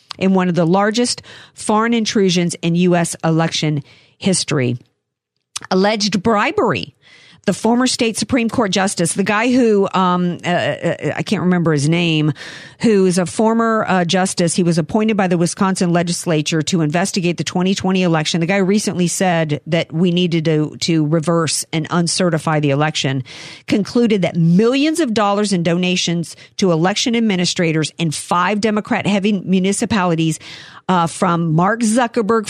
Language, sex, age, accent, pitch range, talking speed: English, female, 50-69, American, 160-210 Hz, 150 wpm